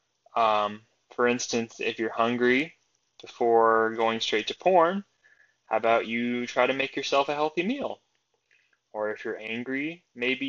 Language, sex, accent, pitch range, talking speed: English, male, American, 110-130 Hz, 150 wpm